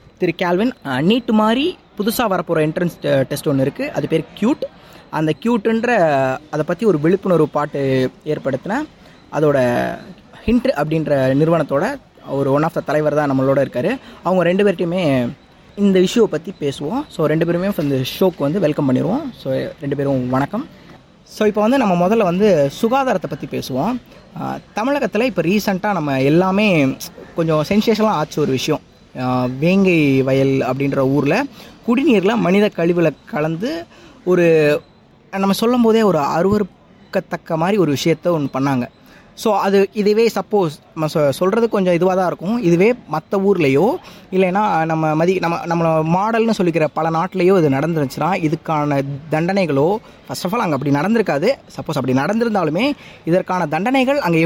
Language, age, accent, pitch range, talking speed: Tamil, 20-39, native, 150-210 Hz, 135 wpm